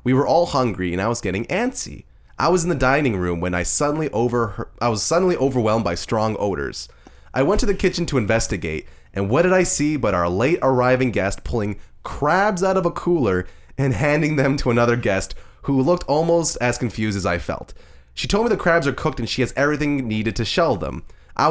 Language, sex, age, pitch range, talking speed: English, male, 20-39, 105-145 Hz, 220 wpm